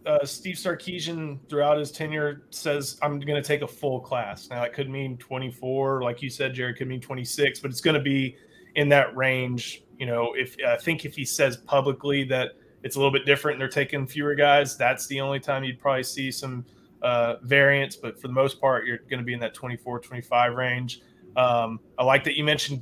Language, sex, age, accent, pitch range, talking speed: English, male, 20-39, American, 130-150 Hz, 220 wpm